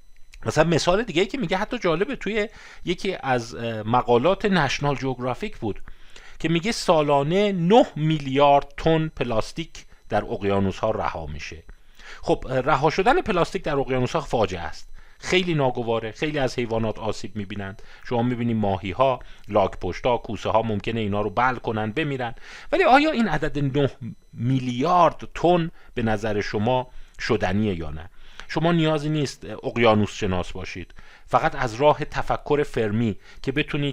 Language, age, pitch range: Persian, 40-59, 105-155 Hz